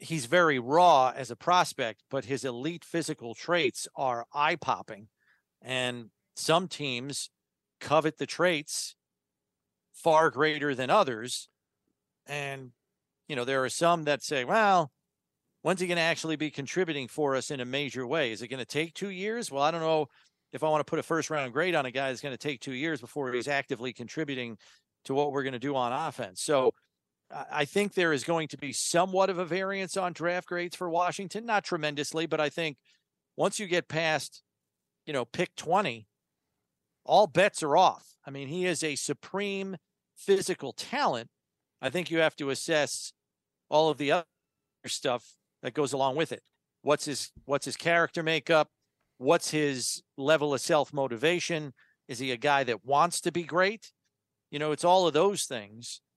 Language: English